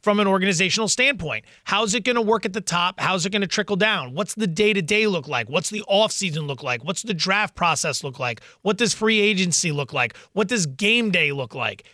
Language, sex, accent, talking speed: English, male, American, 230 wpm